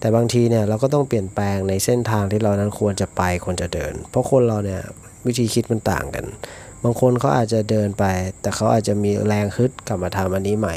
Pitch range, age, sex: 100-120 Hz, 30-49, male